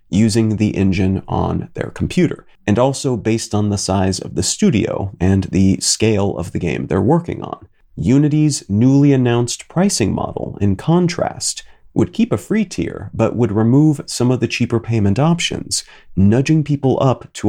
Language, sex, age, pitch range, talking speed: English, male, 30-49, 105-135 Hz, 170 wpm